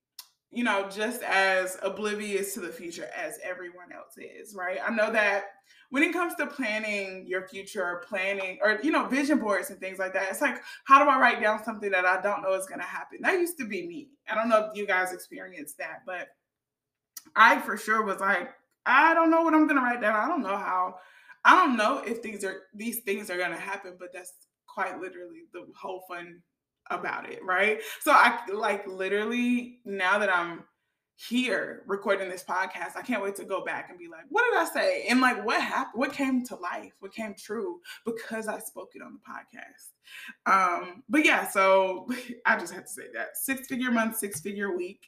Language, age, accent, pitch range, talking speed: English, 20-39, American, 185-255 Hz, 215 wpm